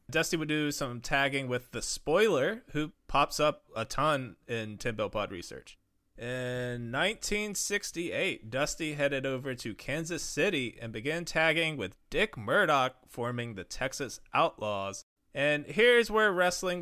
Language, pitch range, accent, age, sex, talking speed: English, 120-155 Hz, American, 20-39, male, 135 wpm